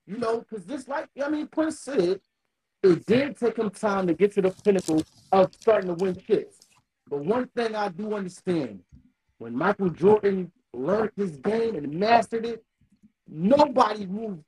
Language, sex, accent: English, male, American